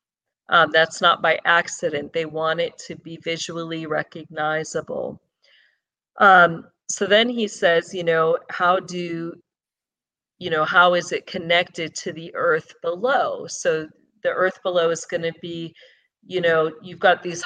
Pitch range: 165-195 Hz